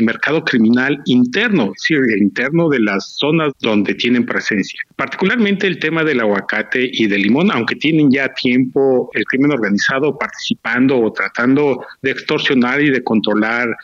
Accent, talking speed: Mexican, 155 wpm